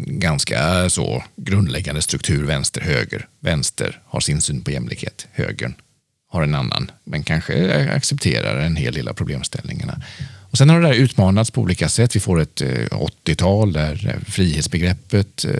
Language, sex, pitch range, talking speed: Swedish, male, 85-115 Hz, 150 wpm